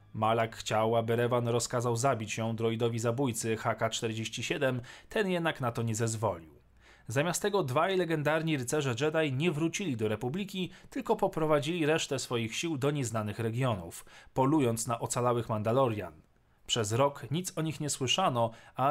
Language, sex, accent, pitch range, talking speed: Polish, male, native, 115-160 Hz, 145 wpm